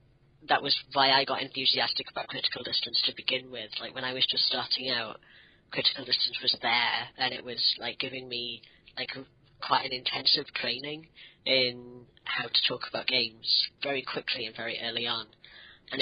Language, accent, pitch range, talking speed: English, British, 120-140 Hz, 175 wpm